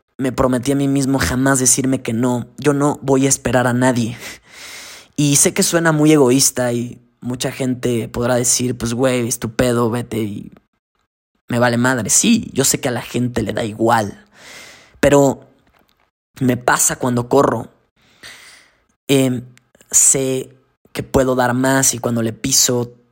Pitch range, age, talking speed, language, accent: 120-135 Hz, 20-39, 155 wpm, Spanish, Mexican